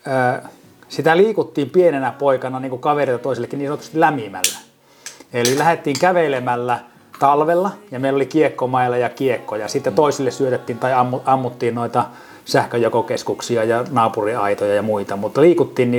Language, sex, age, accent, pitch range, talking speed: Finnish, male, 30-49, native, 110-130 Hz, 130 wpm